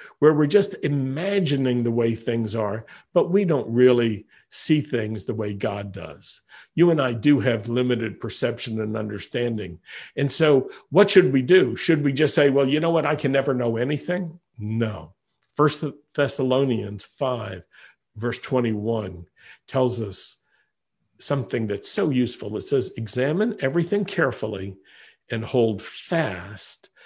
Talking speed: 145 wpm